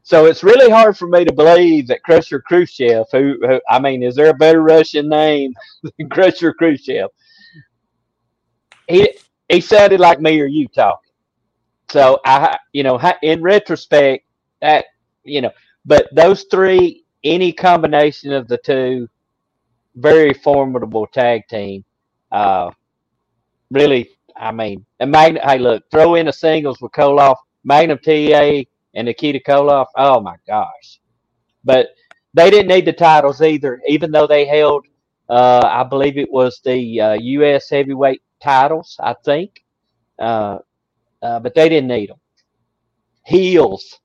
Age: 40-59